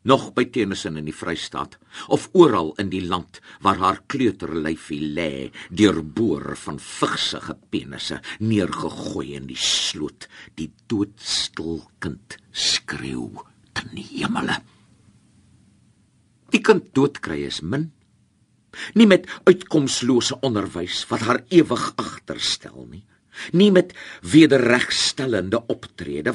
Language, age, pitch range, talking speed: Dutch, 50-69, 95-135 Hz, 105 wpm